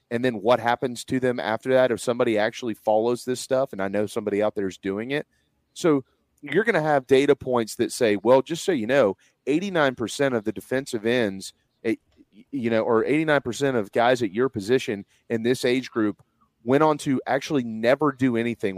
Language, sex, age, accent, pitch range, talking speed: English, male, 30-49, American, 115-145 Hz, 200 wpm